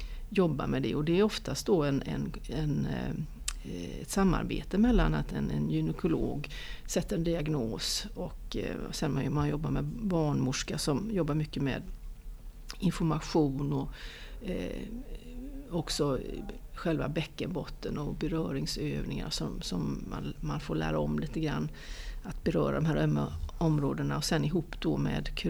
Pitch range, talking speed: 135-195 Hz, 140 wpm